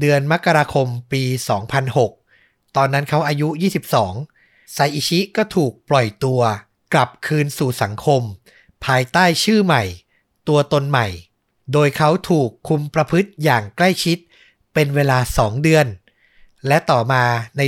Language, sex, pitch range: Thai, male, 125-160 Hz